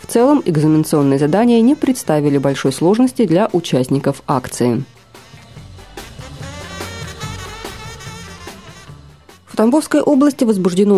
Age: 30-49